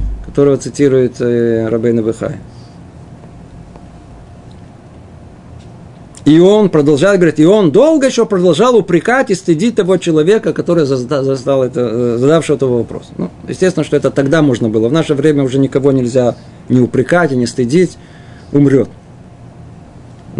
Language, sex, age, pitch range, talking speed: Russian, male, 50-69, 130-175 Hz, 130 wpm